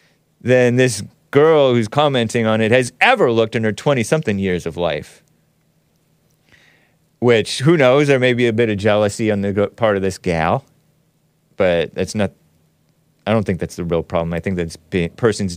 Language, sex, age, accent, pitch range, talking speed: English, male, 30-49, American, 100-155 Hz, 175 wpm